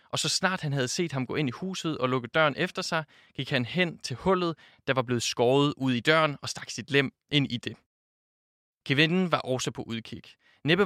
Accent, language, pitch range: native, Danish, 125-160 Hz